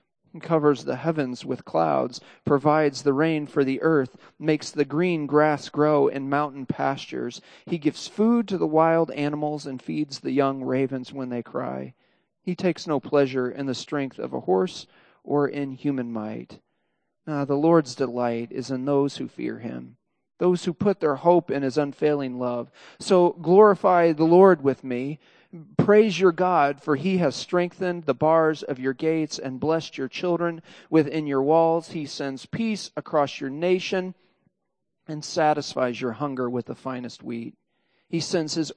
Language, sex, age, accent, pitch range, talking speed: English, male, 40-59, American, 130-165 Hz, 170 wpm